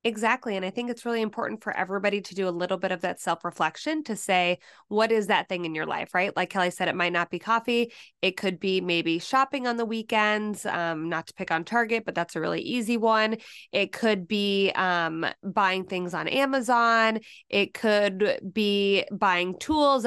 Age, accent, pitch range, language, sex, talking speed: 20-39, American, 190-245 Hz, English, female, 205 wpm